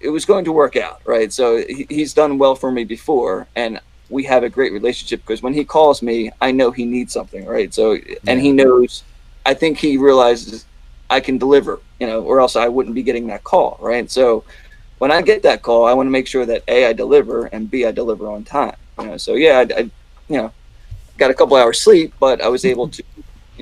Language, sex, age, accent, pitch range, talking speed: English, male, 30-49, American, 115-165 Hz, 235 wpm